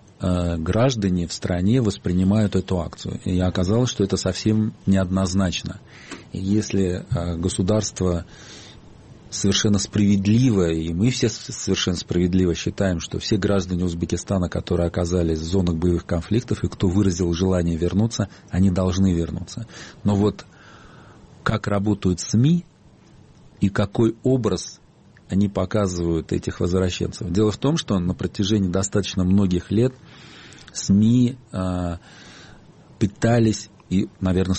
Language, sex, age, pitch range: Russian, male, 40-59, 90-110 Hz